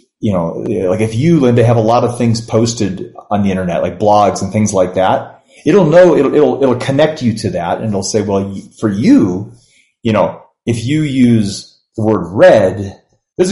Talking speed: 200 wpm